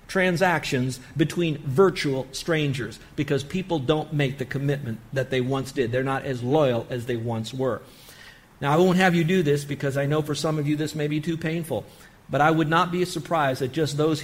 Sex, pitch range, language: male, 135-160 Hz, English